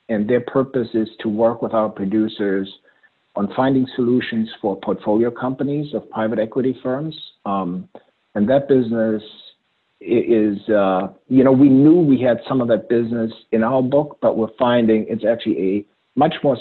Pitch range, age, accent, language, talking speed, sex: 105-125 Hz, 50-69, American, English, 165 wpm, male